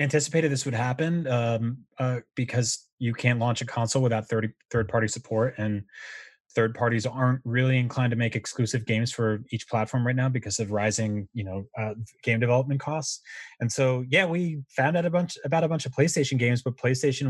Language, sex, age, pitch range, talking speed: English, male, 20-39, 115-145 Hz, 200 wpm